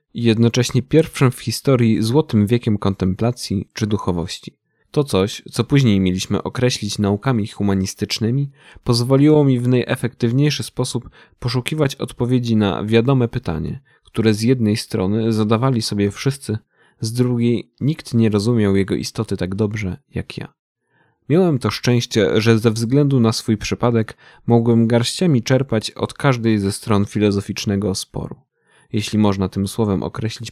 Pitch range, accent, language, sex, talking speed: 105-125 Hz, native, Polish, male, 135 wpm